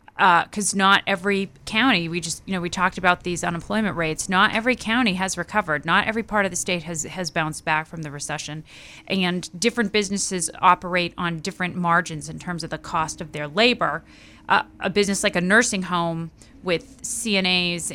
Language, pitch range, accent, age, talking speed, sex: English, 165-195 Hz, American, 30-49, 190 wpm, female